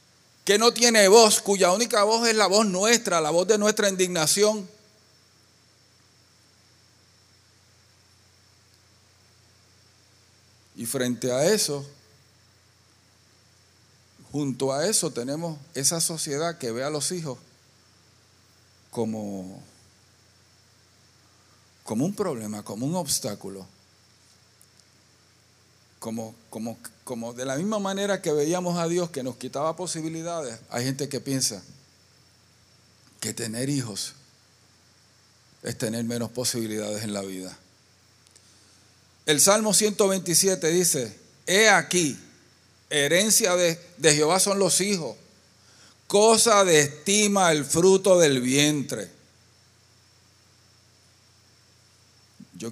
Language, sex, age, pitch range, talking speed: Spanish, male, 50-69, 105-160 Hz, 100 wpm